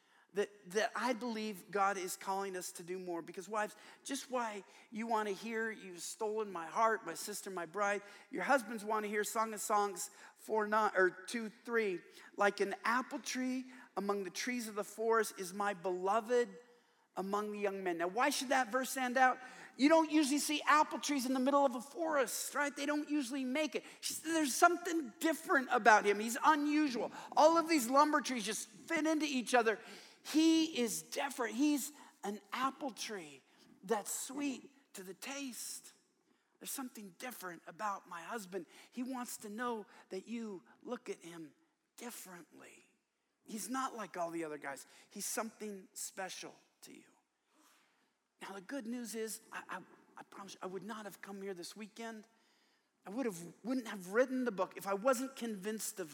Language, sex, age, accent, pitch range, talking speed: English, male, 40-59, American, 200-265 Hz, 180 wpm